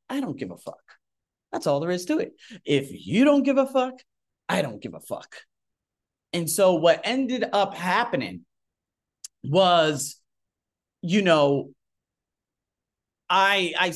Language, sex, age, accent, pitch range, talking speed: English, male, 30-49, American, 140-200 Hz, 140 wpm